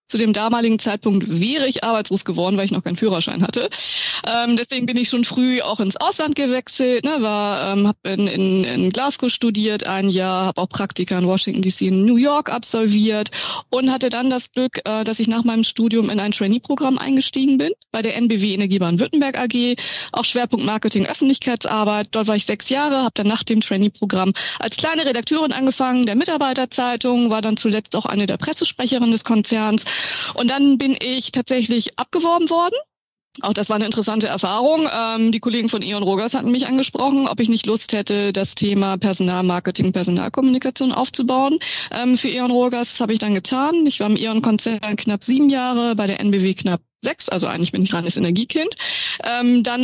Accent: German